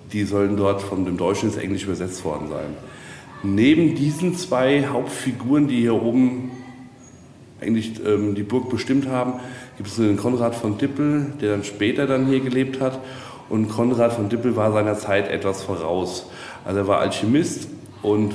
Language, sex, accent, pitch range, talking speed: German, male, German, 105-130 Hz, 165 wpm